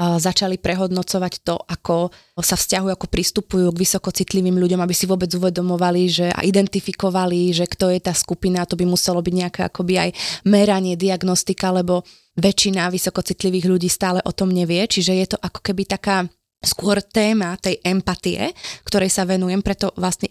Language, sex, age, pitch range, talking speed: Slovak, female, 20-39, 180-200 Hz, 165 wpm